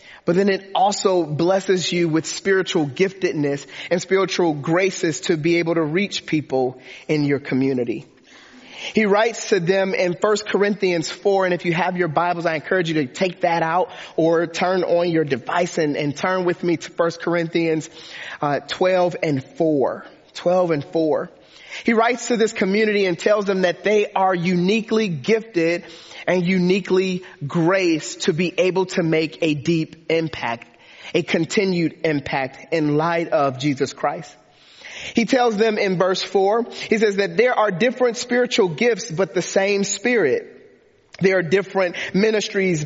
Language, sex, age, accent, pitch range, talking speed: English, male, 30-49, American, 165-200 Hz, 160 wpm